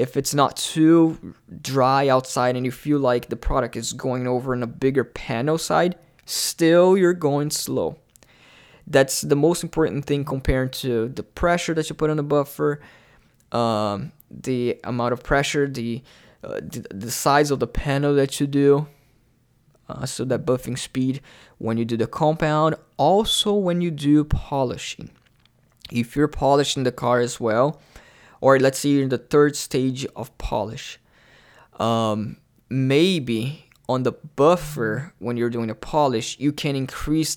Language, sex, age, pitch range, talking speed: English, male, 20-39, 125-150 Hz, 160 wpm